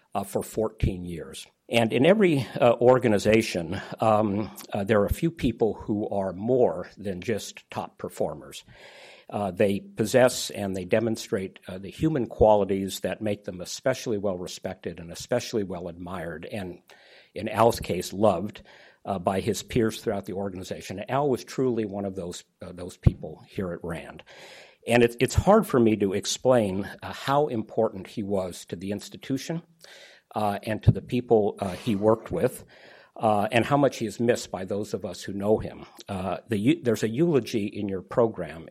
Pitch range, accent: 95-120 Hz, American